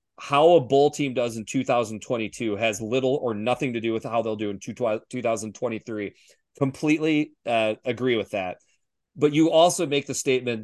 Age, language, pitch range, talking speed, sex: 30-49, English, 115-140 Hz, 170 wpm, male